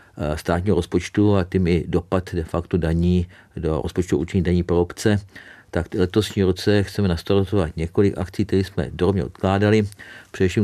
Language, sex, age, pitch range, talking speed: Czech, male, 50-69, 90-100 Hz, 150 wpm